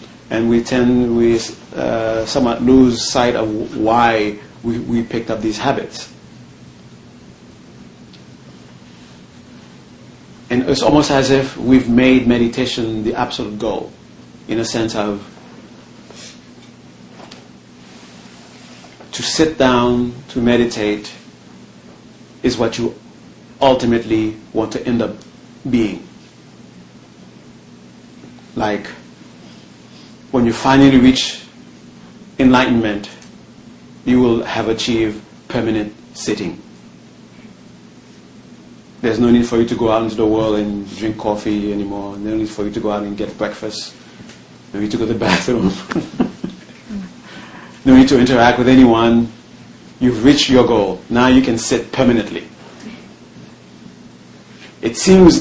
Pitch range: 105-125 Hz